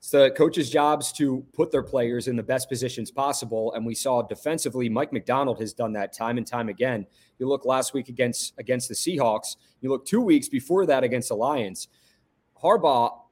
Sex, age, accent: male, 30-49, American